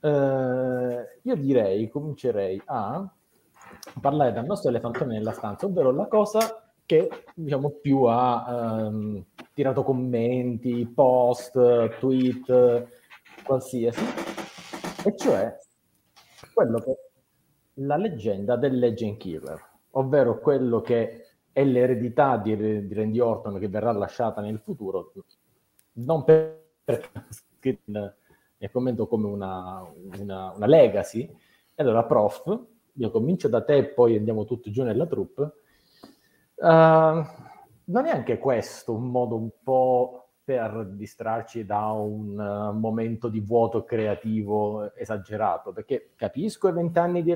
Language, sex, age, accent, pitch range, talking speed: Italian, male, 30-49, native, 110-140 Hz, 120 wpm